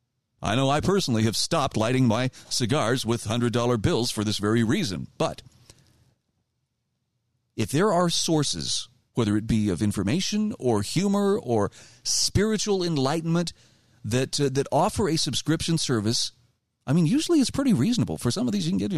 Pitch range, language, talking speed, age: 115-155 Hz, English, 165 wpm, 40-59